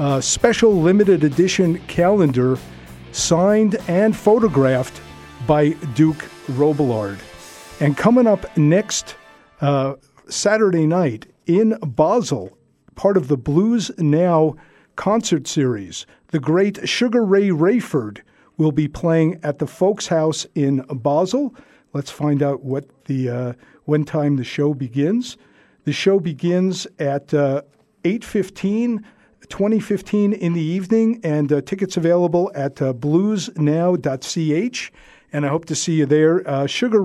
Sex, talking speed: male, 125 wpm